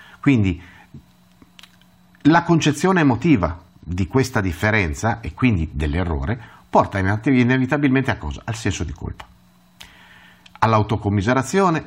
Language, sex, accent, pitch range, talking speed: Italian, male, native, 95-140 Hz, 95 wpm